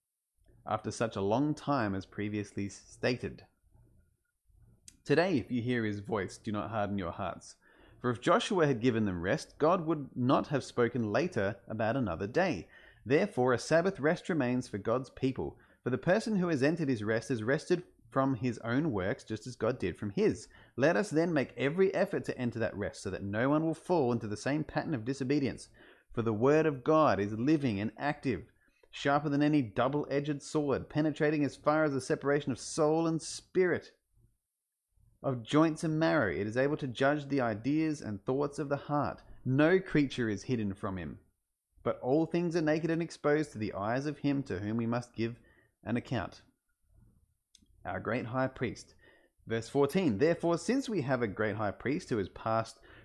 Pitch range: 110-150 Hz